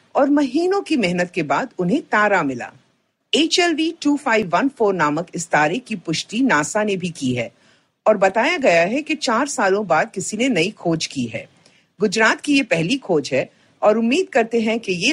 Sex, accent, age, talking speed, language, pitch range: female, native, 50-69, 185 wpm, Hindi, 165-265 Hz